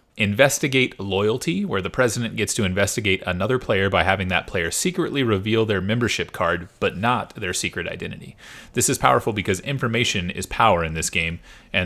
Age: 30-49